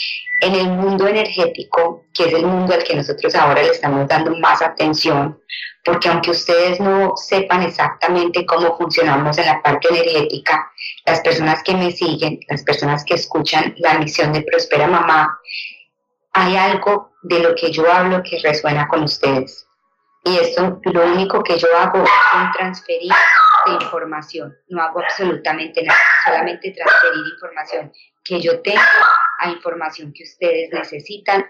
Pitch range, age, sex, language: 165-205 Hz, 30-49, male, English